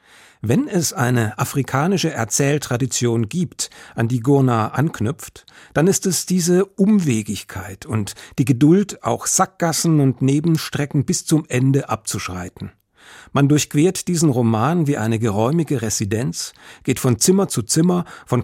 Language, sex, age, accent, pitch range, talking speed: German, male, 50-69, German, 115-155 Hz, 130 wpm